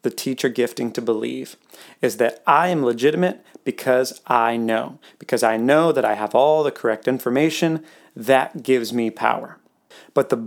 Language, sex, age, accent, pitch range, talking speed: English, male, 30-49, American, 120-175 Hz, 165 wpm